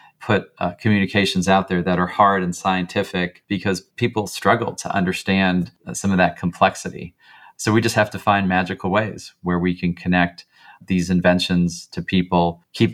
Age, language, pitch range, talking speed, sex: 40-59, English, 90-105 Hz, 170 wpm, male